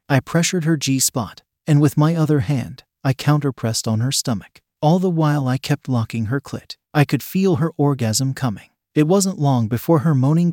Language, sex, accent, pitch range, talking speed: English, male, American, 120-155 Hz, 195 wpm